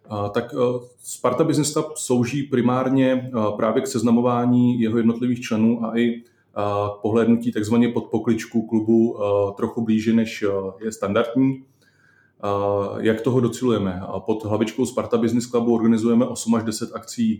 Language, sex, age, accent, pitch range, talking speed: Czech, male, 30-49, native, 105-120 Hz, 130 wpm